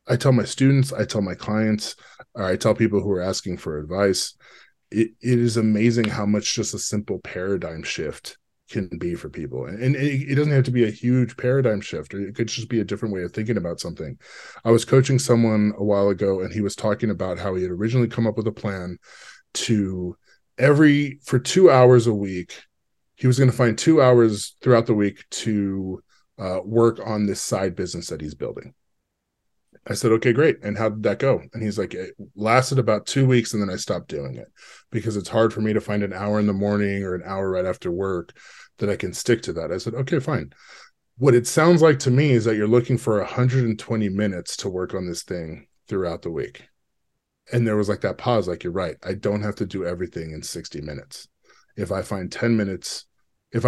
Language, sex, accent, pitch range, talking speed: English, male, American, 100-120 Hz, 225 wpm